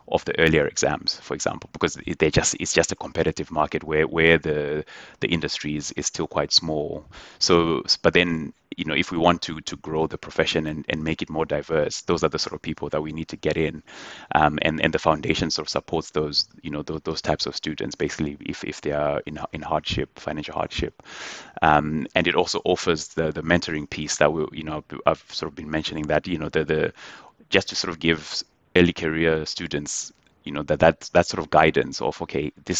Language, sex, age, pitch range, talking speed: English, male, 20-39, 75-80 Hz, 225 wpm